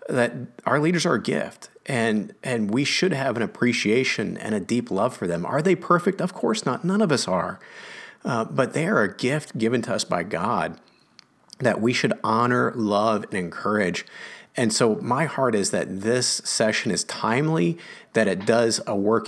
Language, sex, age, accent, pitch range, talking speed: English, male, 40-59, American, 95-125 Hz, 195 wpm